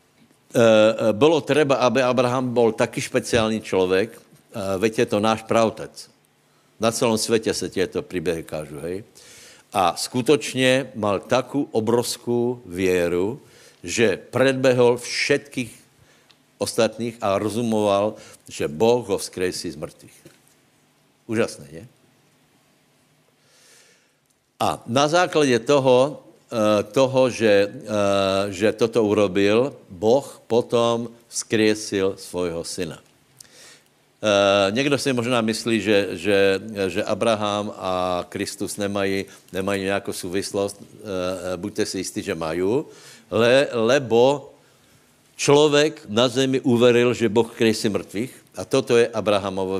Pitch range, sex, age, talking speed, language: 100-125 Hz, male, 70-89, 105 wpm, Slovak